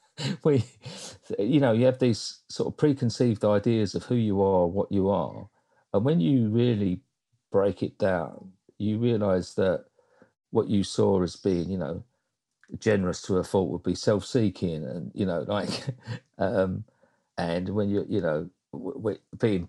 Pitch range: 95-120 Hz